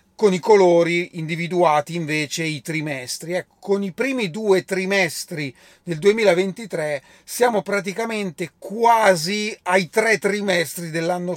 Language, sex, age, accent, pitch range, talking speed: Italian, male, 40-59, native, 160-200 Hz, 115 wpm